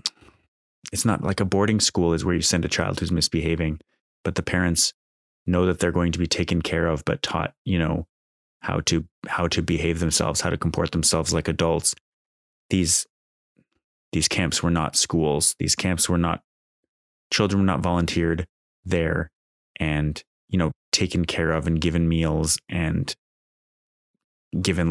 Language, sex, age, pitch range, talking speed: English, male, 20-39, 80-90 Hz, 165 wpm